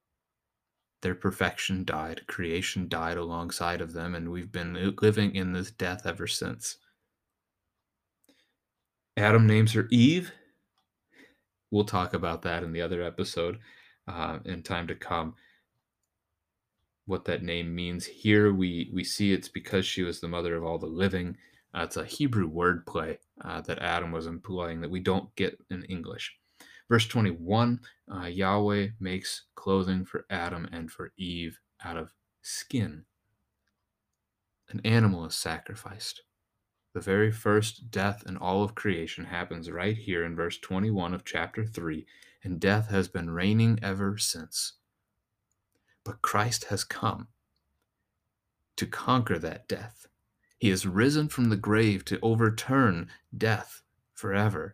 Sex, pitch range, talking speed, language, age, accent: male, 85-105 Hz, 140 wpm, English, 30-49, American